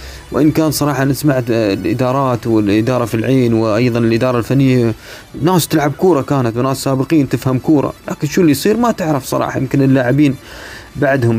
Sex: male